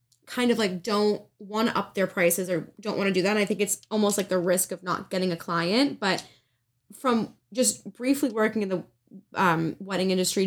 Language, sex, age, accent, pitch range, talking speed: English, female, 10-29, American, 170-215 Hz, 210 wpm